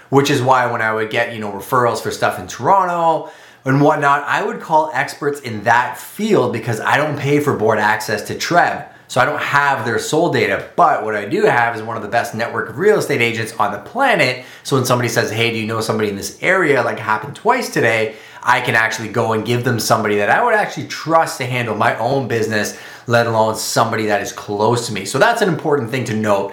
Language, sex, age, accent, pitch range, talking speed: English, male, 30-49, American, 110-135 Hz, 240 wpm